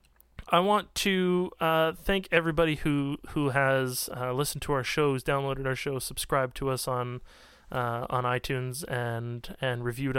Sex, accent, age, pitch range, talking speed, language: male, American, 20-39, 125-155 Hz, 160 wpm, English